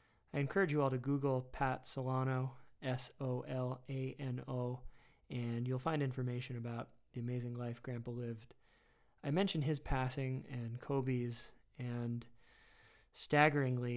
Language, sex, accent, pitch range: English, male, American, 120-135 Hz